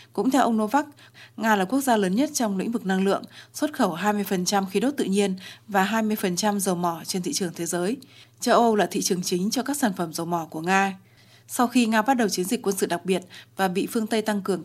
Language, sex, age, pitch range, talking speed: Vietnamese, female, 20-39, 185-230 Hz, 255 wpm